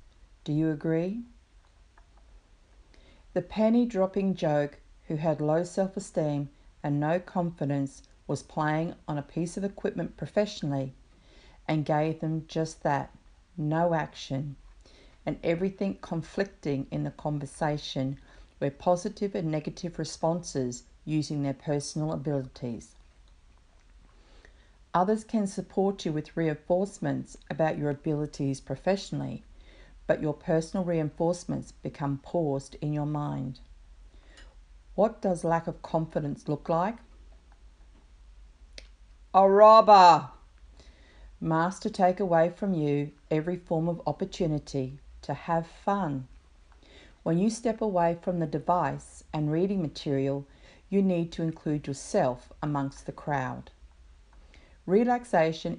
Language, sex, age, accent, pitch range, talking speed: English, female, 40-59, Australian, 135-175 Hz, 110 wpm